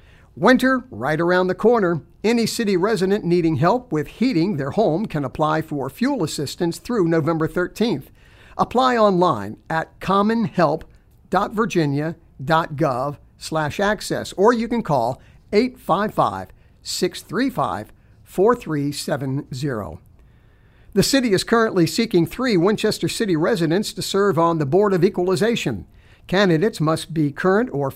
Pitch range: 150-200 Hz